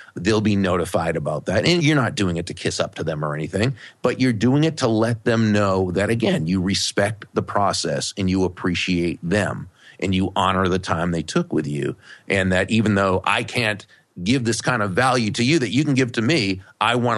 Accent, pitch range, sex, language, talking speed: American, 95-125 Hz, male, English, 225 wpm